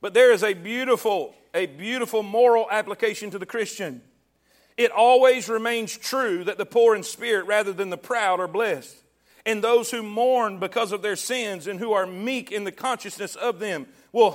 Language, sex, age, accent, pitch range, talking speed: English, male, 40-59, American, 200-265 Hz, 190 wpm